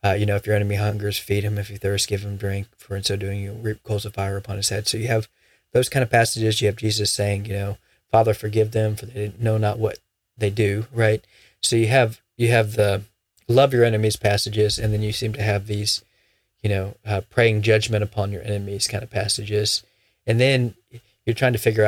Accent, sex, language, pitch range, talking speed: American, male, English, 105-115 Hz, 230 wpm